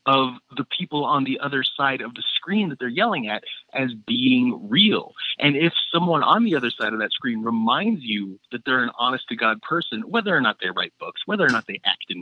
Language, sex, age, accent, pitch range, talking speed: English, male, 30-49, American, 120-175 Hz, 235 wpm